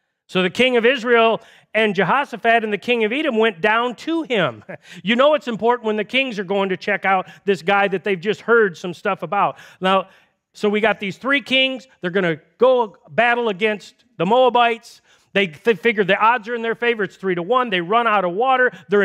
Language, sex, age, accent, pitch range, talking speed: English, male, 40-59, American, 200-255 Hz, 225 wpm